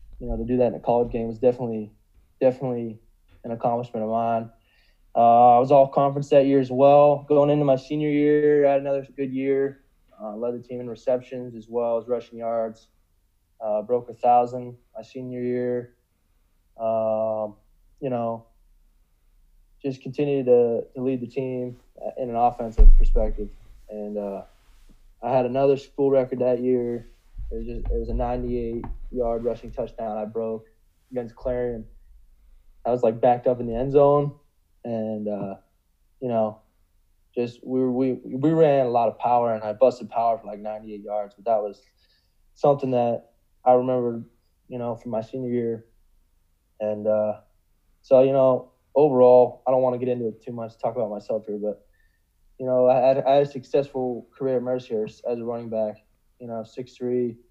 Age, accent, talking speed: 20-39, American, 180 wpm